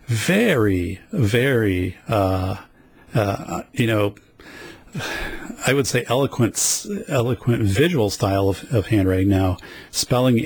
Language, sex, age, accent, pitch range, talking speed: English, male, 40-59, American, 95-120 Hz, 105 wpm